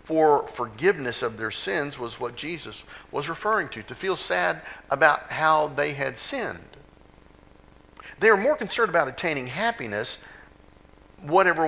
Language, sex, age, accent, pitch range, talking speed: English, male, 50-69, American, 95-140 Hz, 140 wpm